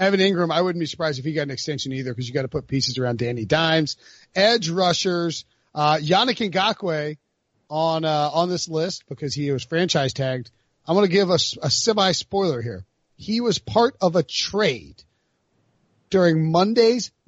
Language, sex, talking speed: English, male, 190 wpm